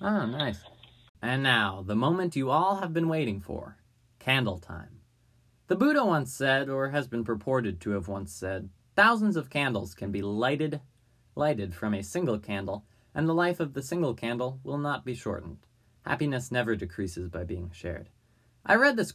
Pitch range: 105-150 Hz